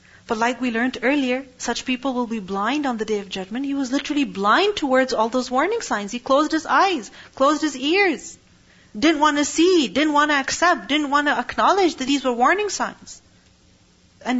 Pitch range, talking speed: 210-265 Hz, 205 wpm